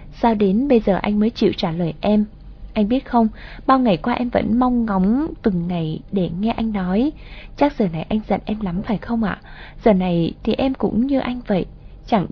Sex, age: female, 20-39